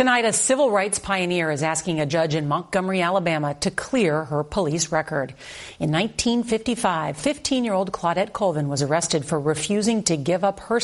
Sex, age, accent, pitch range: female, 40-59, American, 165-220 Hz